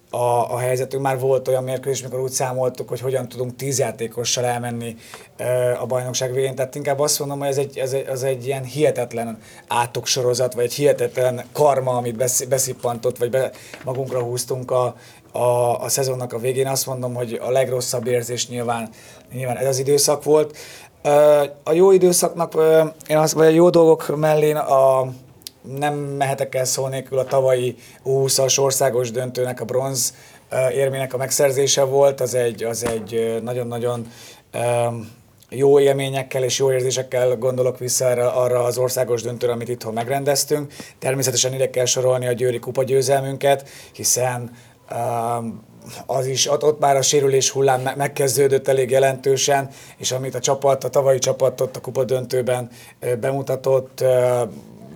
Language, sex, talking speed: Hungarian, male, 150 wpm